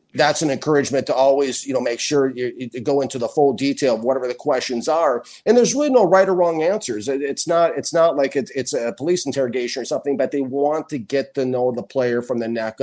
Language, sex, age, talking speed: English, male, 50-69, 240 wpm